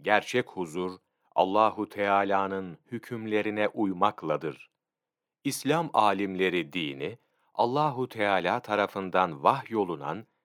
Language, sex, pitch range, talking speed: Turkish, male, 95-130 Hz, 75 wpm